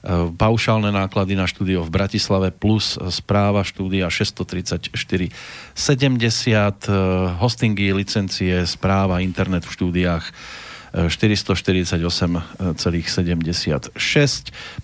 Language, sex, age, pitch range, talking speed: Slovak, male, 40-59, 90-110 Hz, 70 wpm